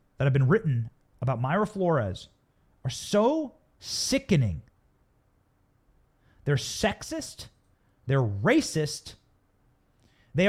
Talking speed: 85 wpm